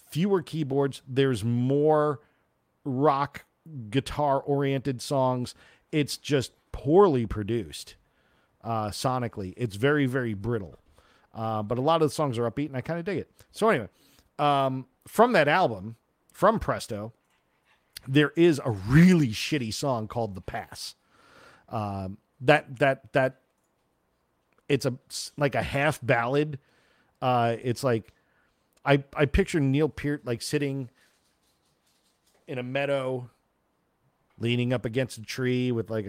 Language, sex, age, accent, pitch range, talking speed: English, male, 40-59, American, 110-140 Hz, 135 wpm